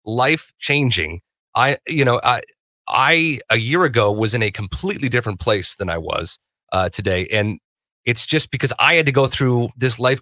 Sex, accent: male, American